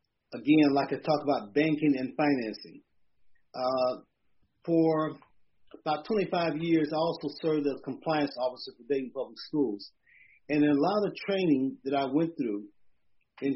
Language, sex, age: English, male, 40-59